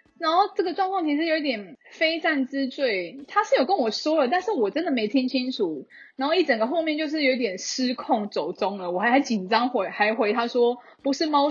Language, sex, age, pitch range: Chinese, female, 10-29, 205-270 Hz